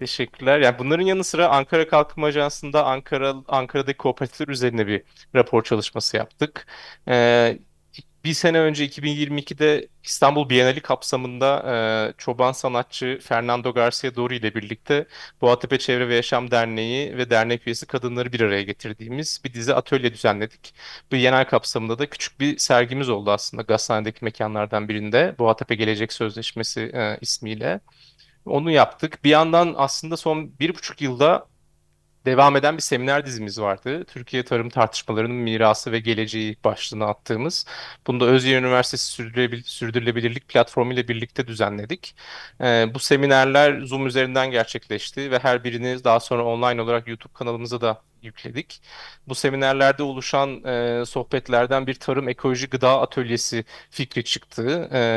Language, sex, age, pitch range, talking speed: Turkish, male, 30-49, 115-135 Hz, 140 wpm